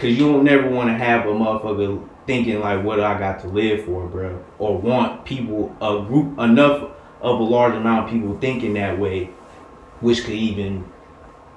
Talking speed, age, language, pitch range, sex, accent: 190 wpm, 20-39, English, 95-120 Hz, male, American